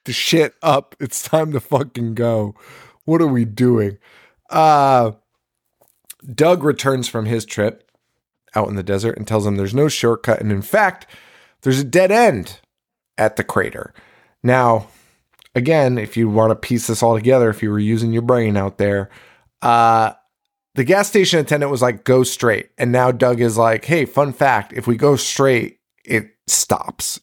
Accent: American